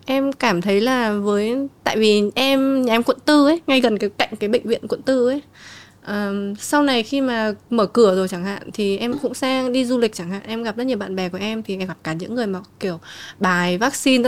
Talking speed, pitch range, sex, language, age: 250 wpm, 200-255 Hz, female, Vietnamese, 20-39